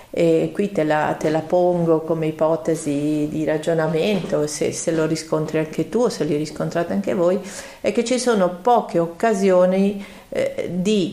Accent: native